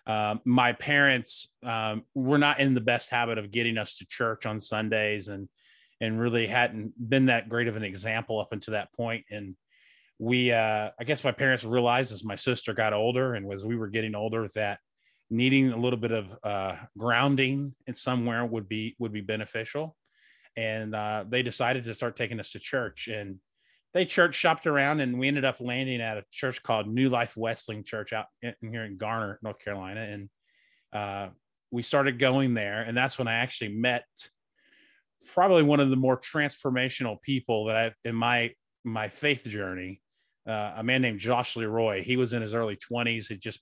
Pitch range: 110-125 Hz